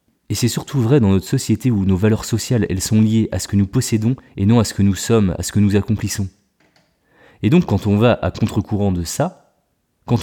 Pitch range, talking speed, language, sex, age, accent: 100-125 Hz, 240 wpm, French, male, 20-39, French